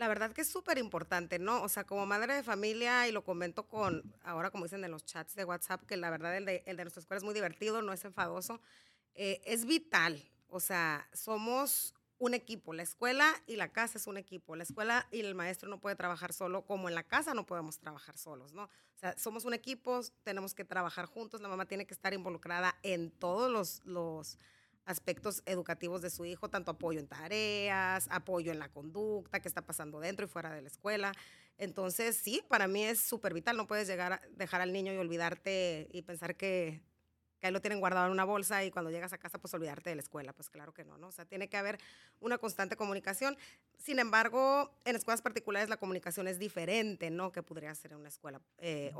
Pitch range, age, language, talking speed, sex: 170-215 Hz, 30-49, Spanish, 225 wpm, female